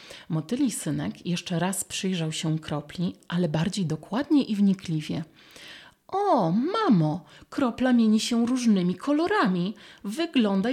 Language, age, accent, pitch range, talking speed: Polish, 30-49, native, 165-215 Hz, 110 wpm